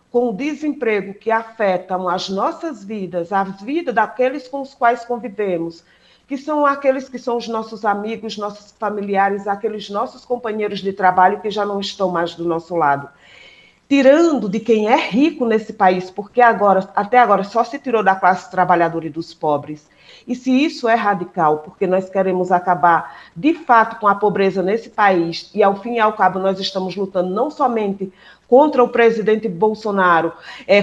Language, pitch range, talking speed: Portuguese, 190-235 Hz, 175 wpm